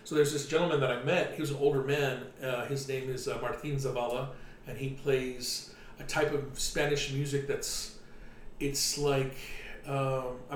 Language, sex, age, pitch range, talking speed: English, male, 40-59, 130-150 Hz, 175 wpm